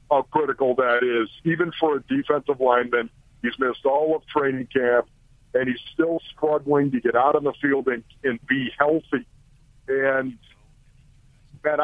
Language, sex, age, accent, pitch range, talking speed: English, male, 50-69, American, 130-160 Hz, 155 wpm